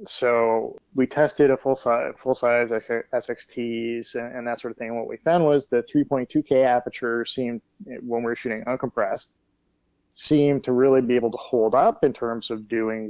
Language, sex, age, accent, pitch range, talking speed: English, male, 20-39, American, 115-130 Hz, 185 wpm